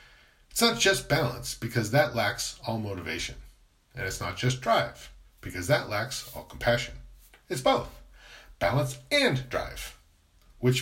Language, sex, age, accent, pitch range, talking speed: English, male, 40-59, American, 110-150 Hz, 140 wpm